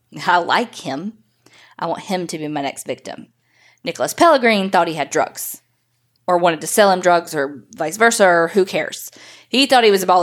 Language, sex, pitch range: English, female, 155-210 Hz